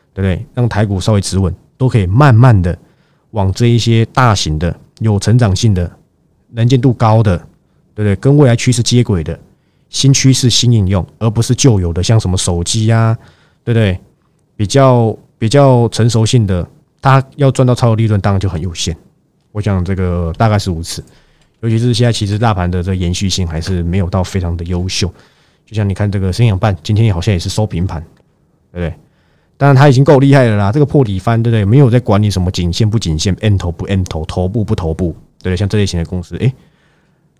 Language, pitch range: Chinese, 95-120 Hz